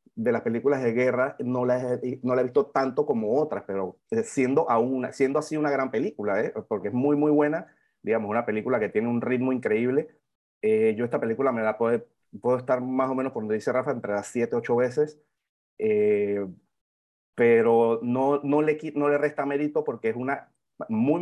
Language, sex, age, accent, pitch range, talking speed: Spanish, male, 30-49, Venezuelan, 120-150 Hz, 200 wpm